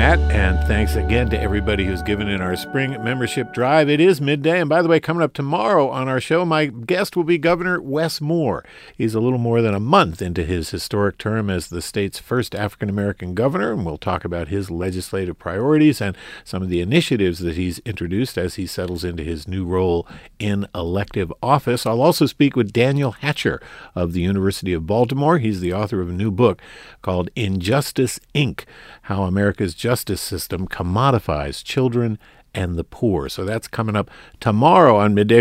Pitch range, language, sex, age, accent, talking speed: 90-130 Hz, English, male, 50-69, American, 190 wpm